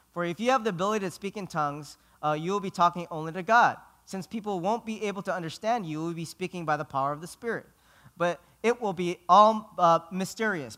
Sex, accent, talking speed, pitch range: male, American, 240 wpm, 150-210 Hz